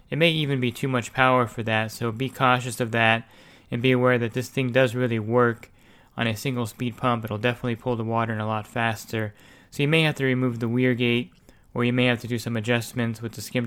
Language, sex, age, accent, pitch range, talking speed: English, male, 20-39, American, 115-130 Hz, 250 wpm